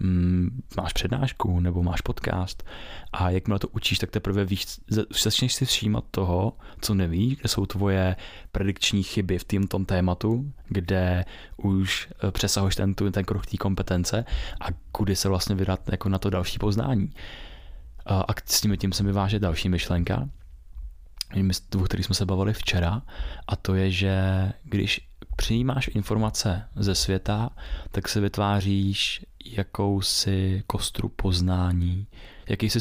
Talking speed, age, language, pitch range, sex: 135 wpm, 20-39, Czech, 90-105 Hz, male